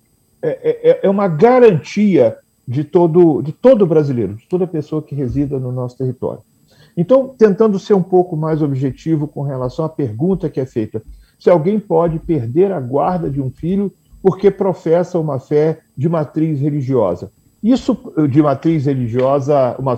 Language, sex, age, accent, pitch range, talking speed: Portuguese, male, 50-69, Brazilian, 145-200 Hz, 155 wpm